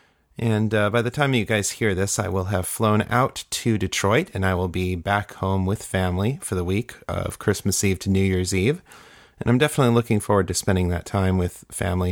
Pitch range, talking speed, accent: 95-110 Hz, 225 wpm, American